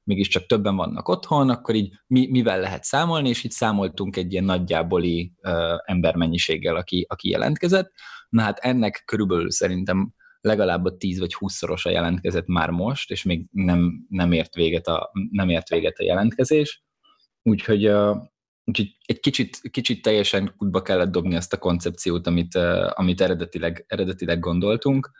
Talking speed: 150 wpm